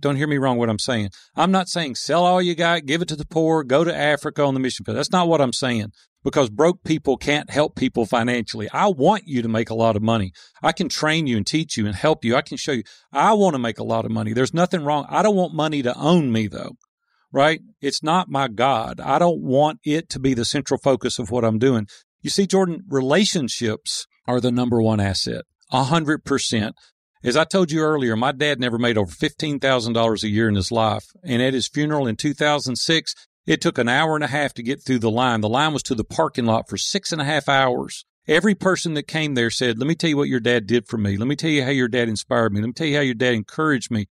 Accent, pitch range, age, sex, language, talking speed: American, 120-155 Hz, 40-59, male, English, 255 wpm